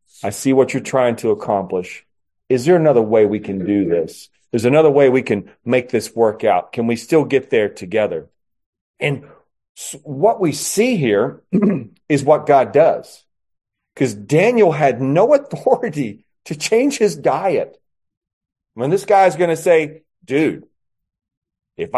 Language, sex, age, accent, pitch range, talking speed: English, male, 40-59, American, 115-175 Hz, 155 wpm